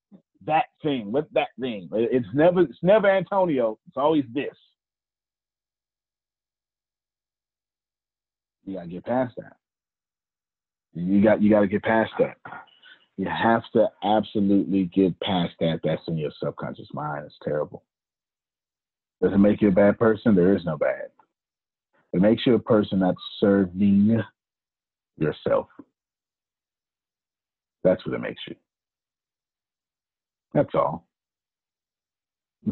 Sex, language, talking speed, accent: male, English, 120 wpm, American